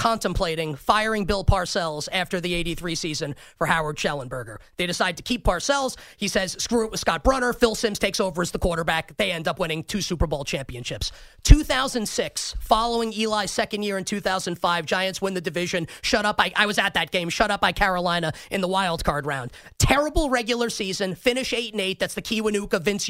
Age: 30-49